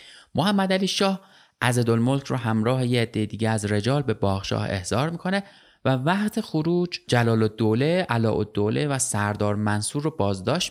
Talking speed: 145 wpm